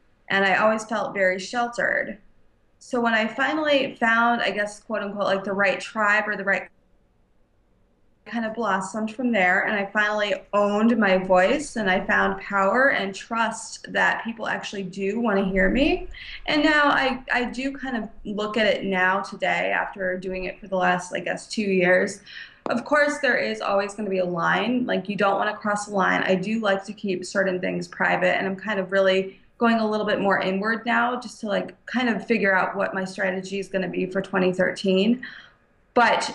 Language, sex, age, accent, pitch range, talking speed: English, female, 20-39, American, 190-240 Hz, 205 wpm